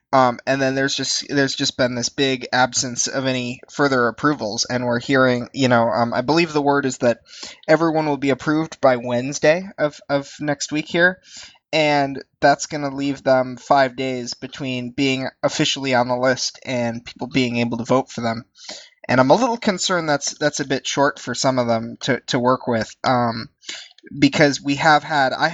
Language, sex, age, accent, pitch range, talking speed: English, male, 20-39, American, 125-145 Hz, 195 wpm